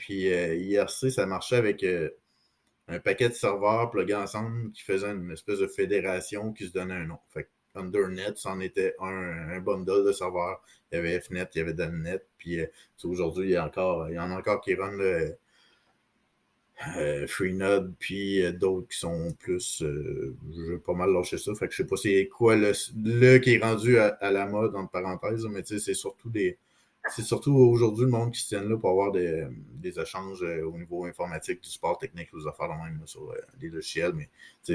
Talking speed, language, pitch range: 220 wpm, French, 95-130 Hz